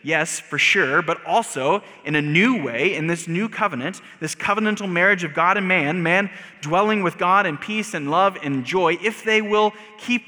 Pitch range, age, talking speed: 130-195 Hz, 20-39, 200 wpm